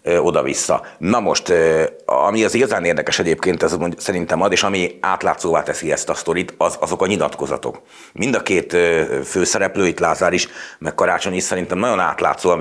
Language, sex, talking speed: Hungarian, male, 155 wpm